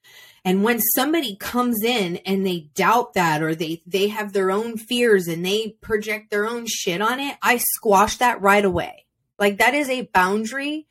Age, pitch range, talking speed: 20-39, 175-245 Hz, 185 wpm